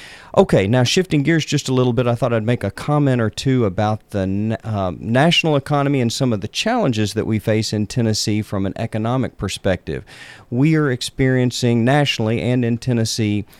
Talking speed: 185 wpm